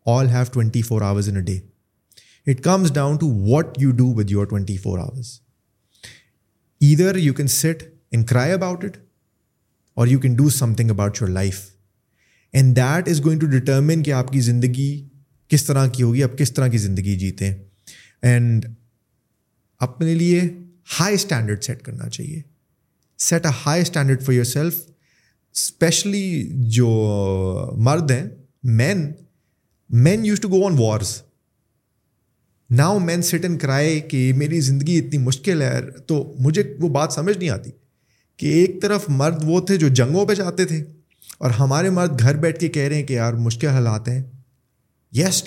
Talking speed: 145 wpm